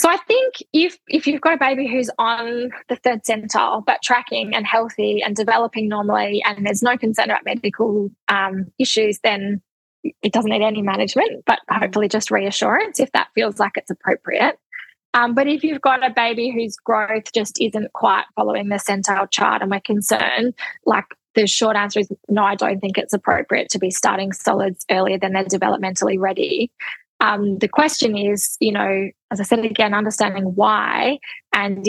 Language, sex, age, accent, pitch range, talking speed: English, female, 10-29, Australian, 205-235 Hz, 185 wpm